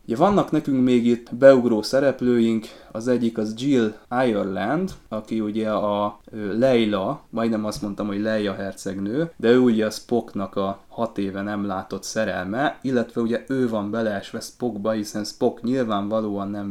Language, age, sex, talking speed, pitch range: Hungarian, 20-39, male, 155 wpm, 100-120 Hz